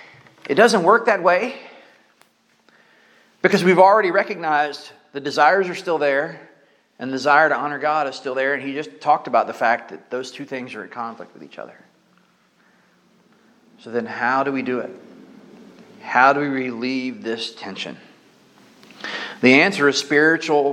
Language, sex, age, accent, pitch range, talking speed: English, male, 40-59, American, 135-190 Hz, 165 wpm